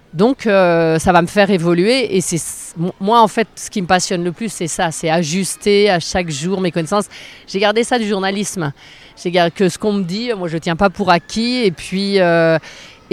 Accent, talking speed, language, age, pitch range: French, 225 wpm, French, 30-49, 170-215 Hz